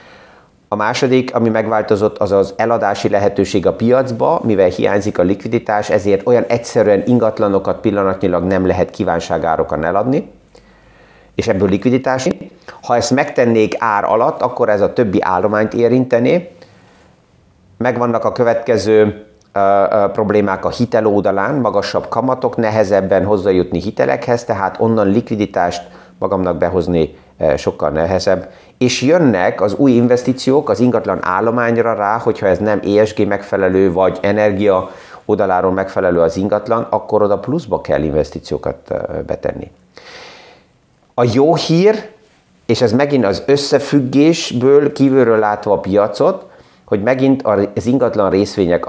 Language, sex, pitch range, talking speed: Hungarian, male, 100-125 Hz, 125 wpm